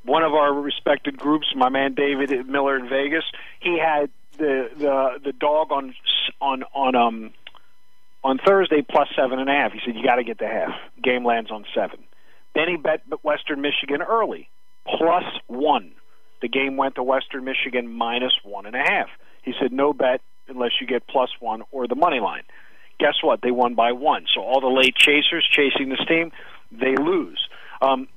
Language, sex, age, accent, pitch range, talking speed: English, male, 50-69, American, 130-160 Hz, 190 wpm